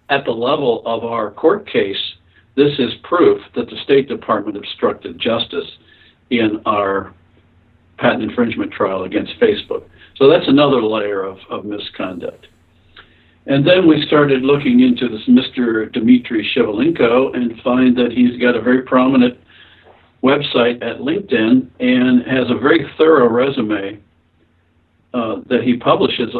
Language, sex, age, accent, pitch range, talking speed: English, male, 60-79, American, 95-130 Hz, 140 wpm